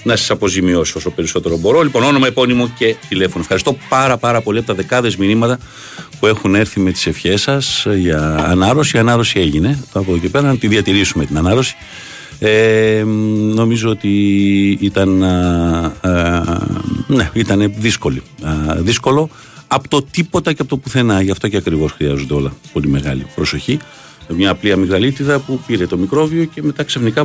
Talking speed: 170 wpm